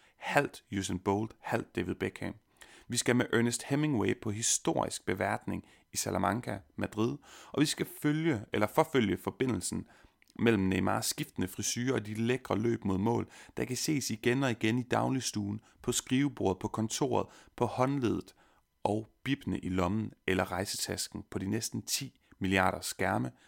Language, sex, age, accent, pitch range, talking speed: Danish, male, 30-49, native, 105-125 Hz, 155 wpm